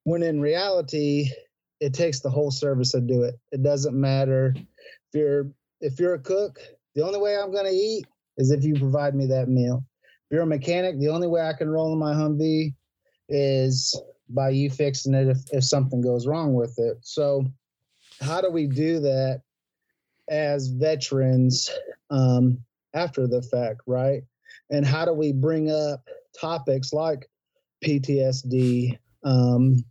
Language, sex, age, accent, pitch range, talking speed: English, male, 30-49, American, 130-155 Hz, 165 wpm